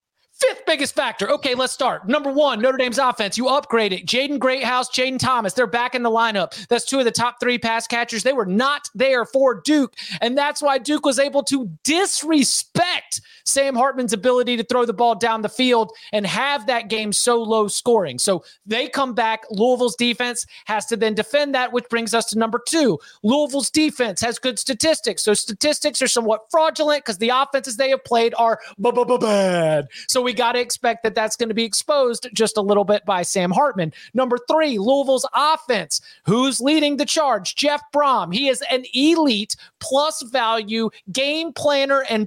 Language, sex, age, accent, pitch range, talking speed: English, male, 30-49, American, 225-275 Hz, 190 wpm